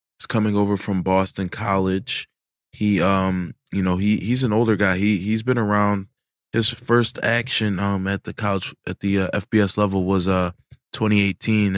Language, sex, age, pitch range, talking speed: English, male, 20-39, 90-105 Hz, 175 wpm